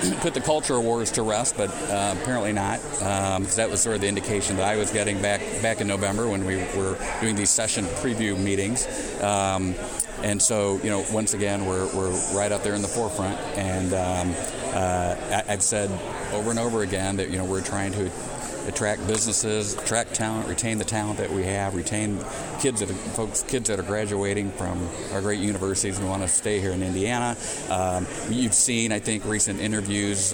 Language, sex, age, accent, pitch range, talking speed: English, male, 50-69, American, 95-105 Hz, 200 wpm